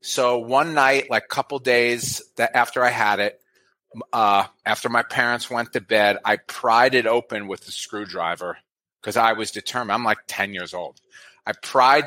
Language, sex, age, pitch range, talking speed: English, male, 40-59, 105-135 Hz, 180 wpm